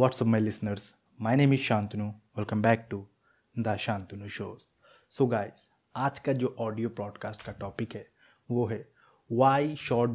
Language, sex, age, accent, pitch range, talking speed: Hindi, male, 20-39, native, 110-130 Hz, 165 wpm